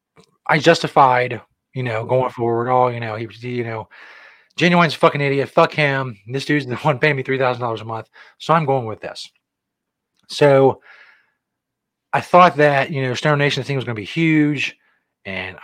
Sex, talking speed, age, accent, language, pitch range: male, 185 wpm, 30-49, American, English, 110-135 Hz